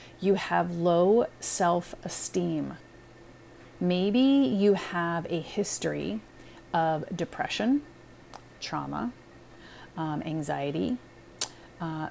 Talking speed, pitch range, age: 75 wpm, 155-190 Hz, 30-49